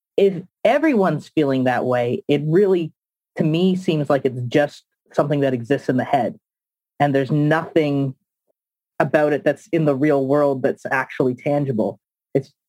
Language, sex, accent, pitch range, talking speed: English, male, American, 140-170 Hz, 155 wpm